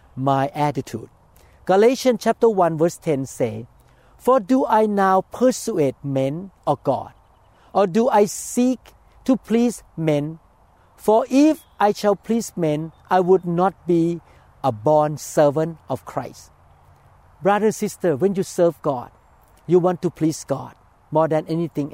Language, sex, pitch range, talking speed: English, male, 135-185 Hz, 145 wpm